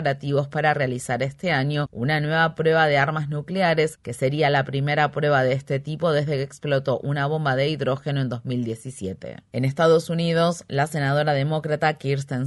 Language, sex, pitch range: Spanish, female, 140-165 Hz